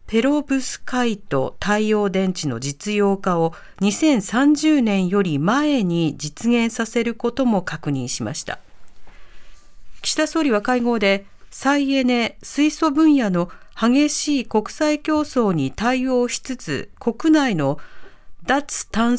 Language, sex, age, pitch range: Japanese, female, 50-69, 180-265 Hz